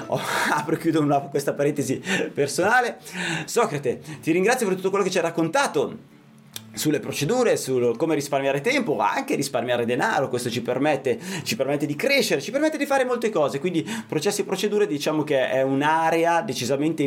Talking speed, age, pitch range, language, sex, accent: 165 wpm, 30-49, 135-205 Hz, Italian, male, native